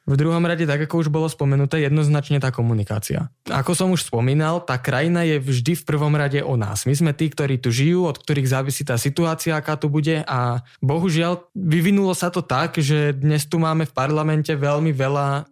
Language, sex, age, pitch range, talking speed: Slovak, male, 20-39, 135-165 Hz, 200 wpm